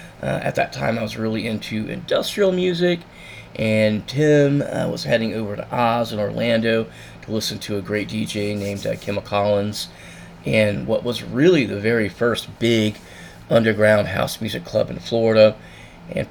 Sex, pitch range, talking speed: male, 105-120 Hz, 165 wpm